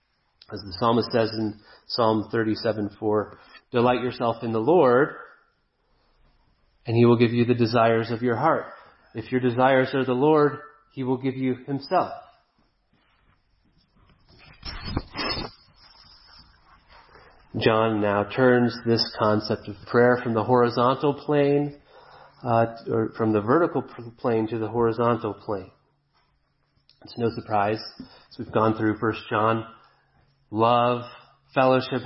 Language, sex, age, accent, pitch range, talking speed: English, male, 30-49, American, 110-130 Hz, 125 wpm